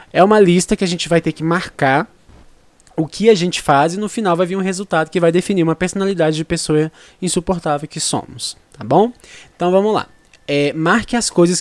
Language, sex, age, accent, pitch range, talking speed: Portuguese, male, 20-39, Brazilian, 120-180 Hz, 210 wpm